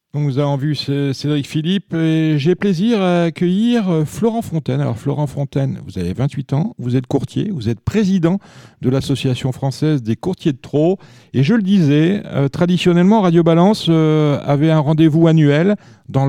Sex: male